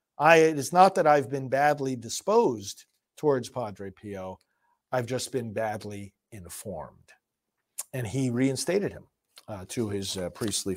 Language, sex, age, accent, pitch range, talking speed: English, male, 50-69, American, 110-140 Hz, 140 wpm